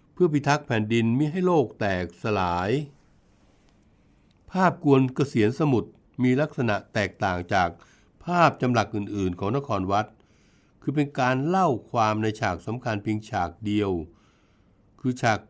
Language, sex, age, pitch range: Thai, male, 60-79, 105-145 Hz